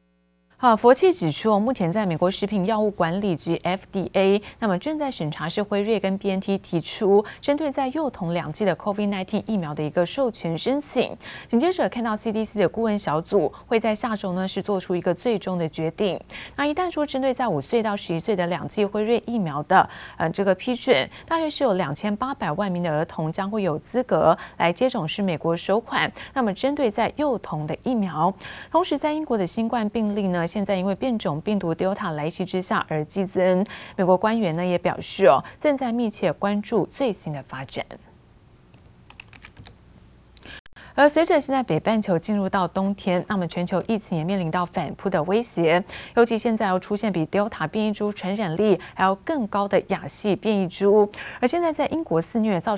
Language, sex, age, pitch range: Chinese, female, 20-39, 175-225 Hz